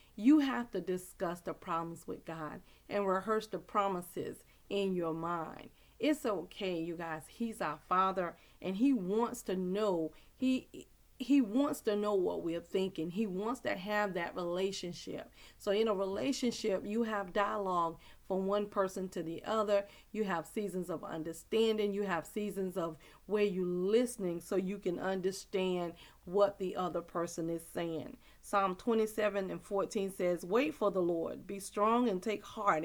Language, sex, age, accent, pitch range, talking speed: English, female, 40-59, American, 180-215 Hz, 165 wpm